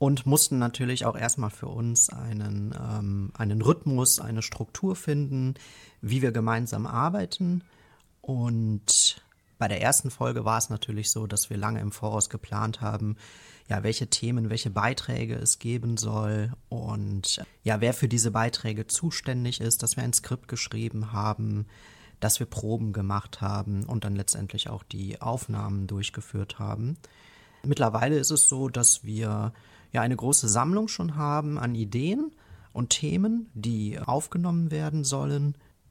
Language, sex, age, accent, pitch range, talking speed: German, male, 30-49, German, 110-130 Hz, 145 wpm